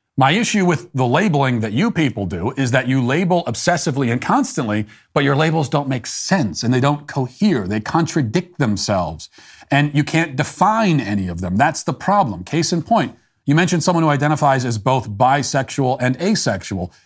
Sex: male